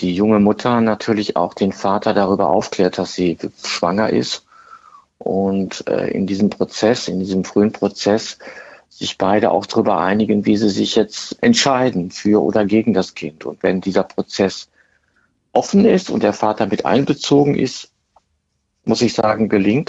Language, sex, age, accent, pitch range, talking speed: German, male, 50-69, German, 100-115 Hz, 155 wpm